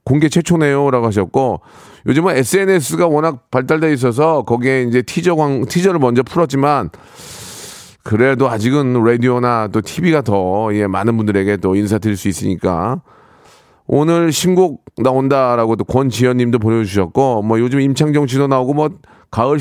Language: Korean